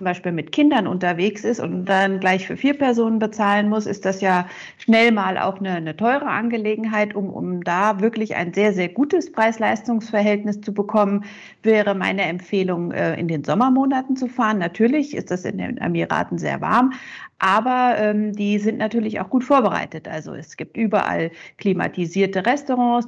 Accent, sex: German, female